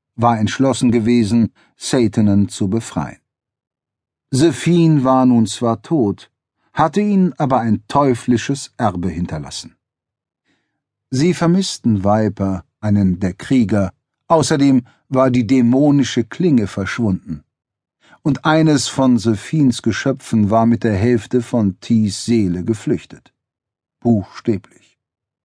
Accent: German